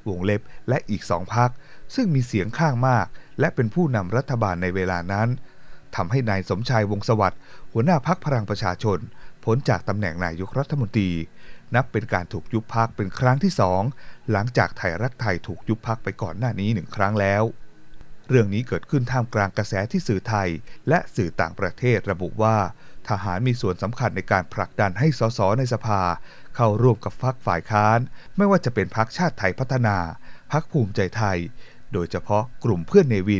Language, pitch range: Thai, 100-125 Hz